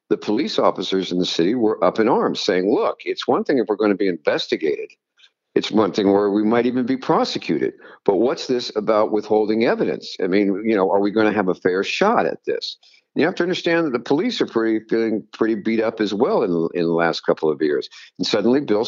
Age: 50-69